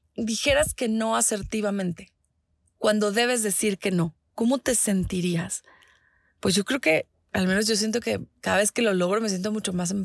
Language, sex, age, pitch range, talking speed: Spanish, female, 20-39, 210-280 Hz, 185 wpm